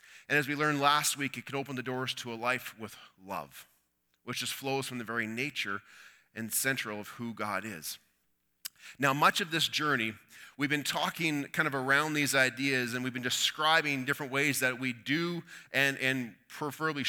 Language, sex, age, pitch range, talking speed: English, male, 30-49, 125-150 Hz, 190 wpm